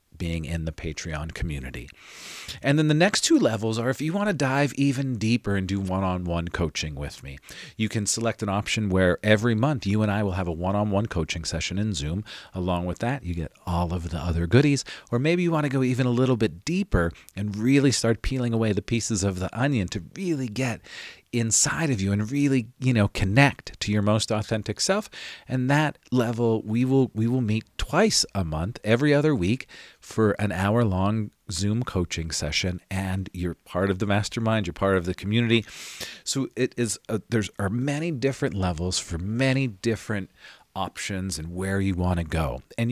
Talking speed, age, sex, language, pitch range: 205 wpm, 40-59, male, English, 95-130 Hz